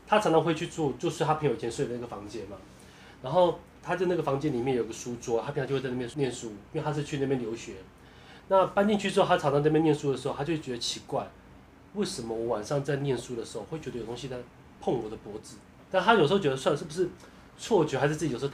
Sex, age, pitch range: male, 30-49, 120-160 Hz